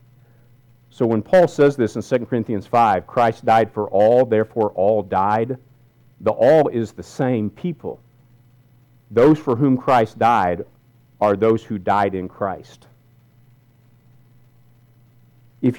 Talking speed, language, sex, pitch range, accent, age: 130 wpm, English, male, 100-125 Hz, American, 50-69